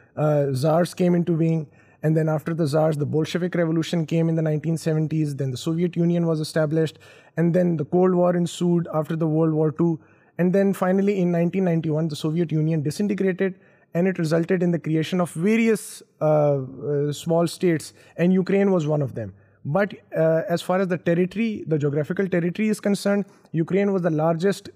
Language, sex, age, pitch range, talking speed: Urdu, male, 20-39, 155-190 Hz, 185 wpm